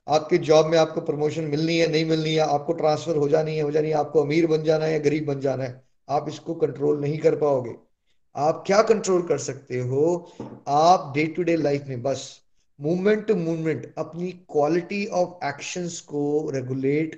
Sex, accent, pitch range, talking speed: male, native, 145-170 Hz, 190 wpm